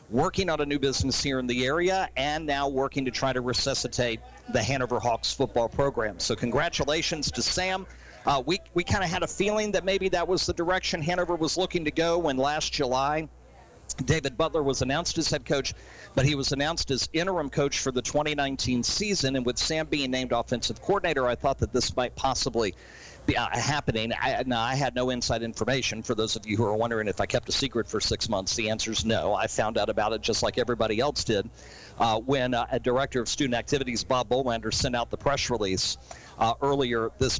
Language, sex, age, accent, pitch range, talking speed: English, male, 50-69, American, 120-155 Hz, 215 wpm